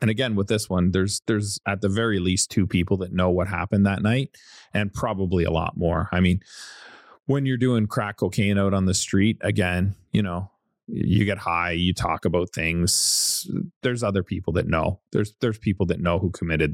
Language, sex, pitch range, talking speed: English, male, 90-110 Hz, 205 wpm